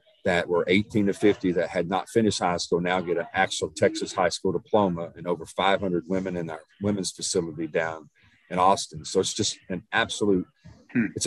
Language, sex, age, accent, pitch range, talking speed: English, male, 40-59, American, 85-100 Hz, 190 wpm